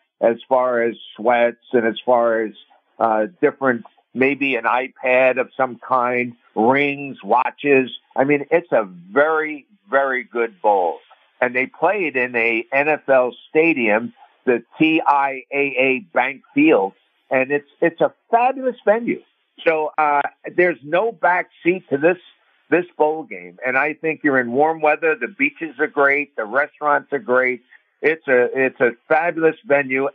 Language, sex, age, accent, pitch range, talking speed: English, male, 60-79, American, 125-165 Hz, 145 wpm